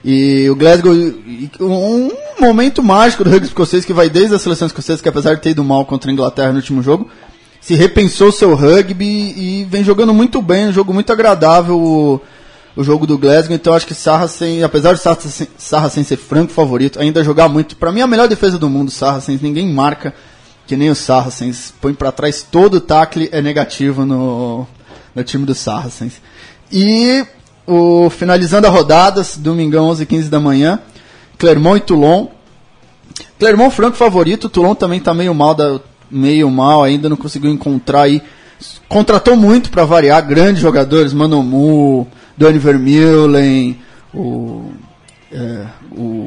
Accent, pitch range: Brazilian, 140-185 Hz